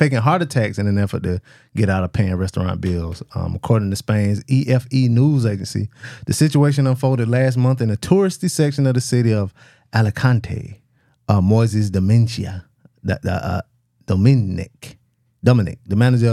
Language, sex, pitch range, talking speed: English, male, 110-140 Hz, 155 wpm